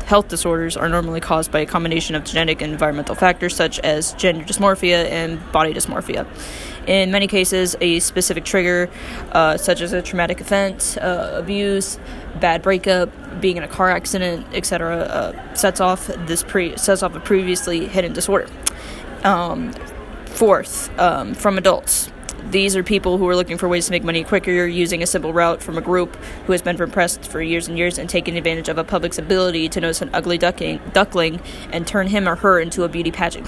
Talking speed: 190 wpm